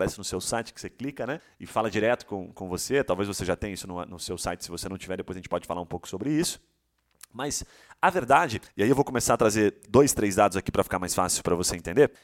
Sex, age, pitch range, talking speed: male, 30-49, 95-135 Hz, 275 wpm